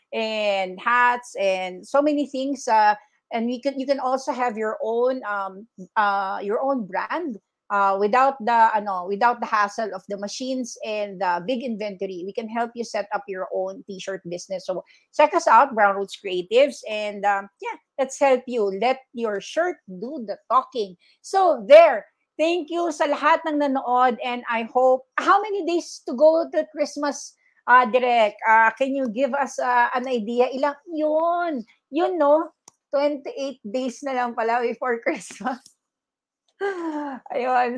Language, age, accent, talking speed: English, 40-59, Filipino, 165 wpm